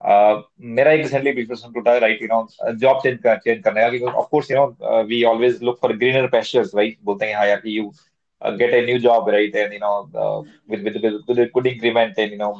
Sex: male